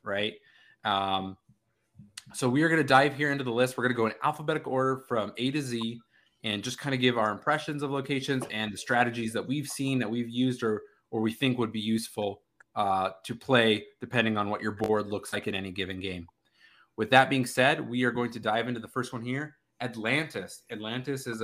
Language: English